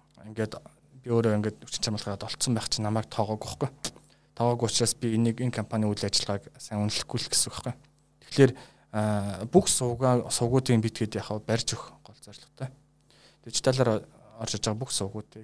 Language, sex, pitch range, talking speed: Russian, male, 100-135 Hz, 85 wpm